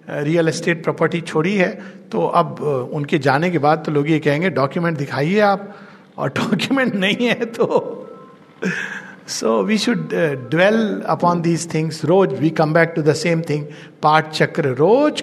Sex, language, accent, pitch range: male, Hindi, native, 160-230 Hz